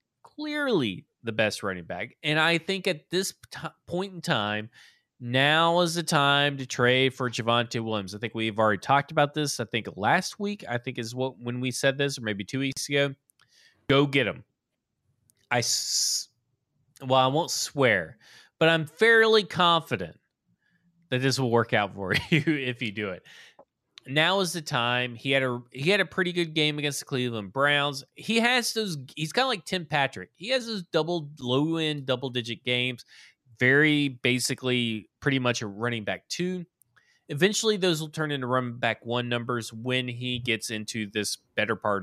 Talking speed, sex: 185 wpm, male